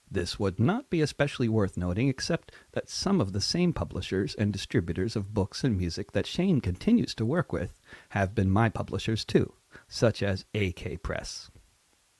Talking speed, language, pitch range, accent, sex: 170 wpm, English, 95-125 Hz, American, male